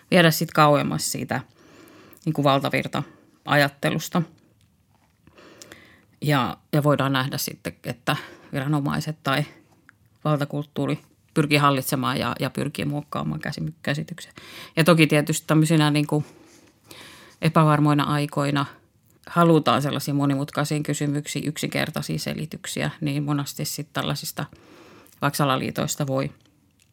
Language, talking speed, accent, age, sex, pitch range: Finnish, 95 wpm, native, 30-49, female, 135-155 Hz